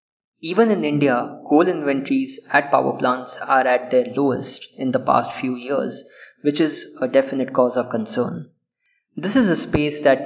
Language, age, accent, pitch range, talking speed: English, 20-39, Indian, 130-165 Hz, 170 wpm